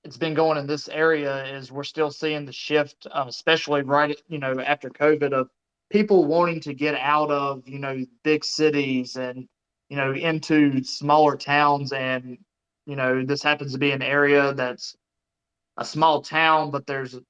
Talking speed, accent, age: 175 wpm, American, 20-39